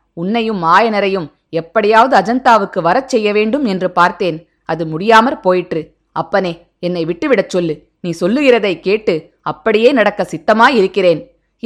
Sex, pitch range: female, 180-255 Hz